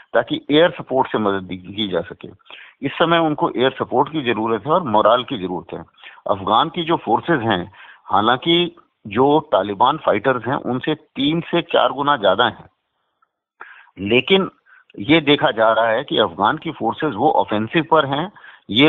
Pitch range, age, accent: 115-155 Hz, 50-69, native